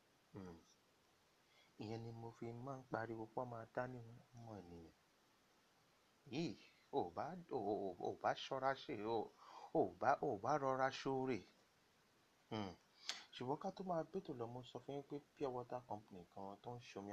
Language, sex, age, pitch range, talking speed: English, male, 30-49, 95-125 Hz, 125 wpm